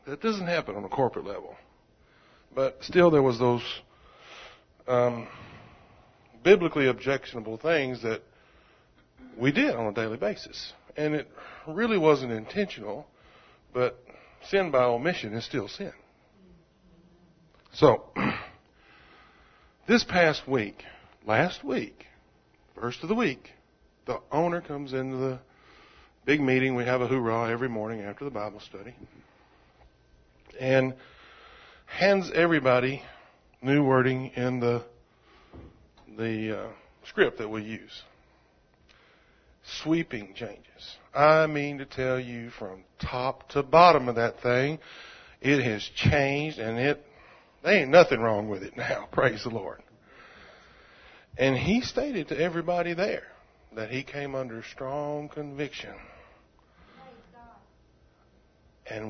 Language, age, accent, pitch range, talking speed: English, 50-69, American, 115-150 Hz, 120 wpm